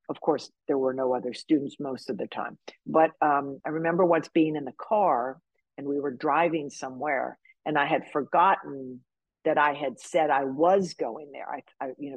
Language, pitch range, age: English, 140-180 Hz, 50-69